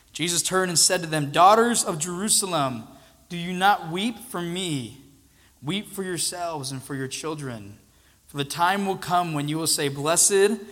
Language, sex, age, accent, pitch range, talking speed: English, male, 20-39, American, 125-170 Hz, 180 wpm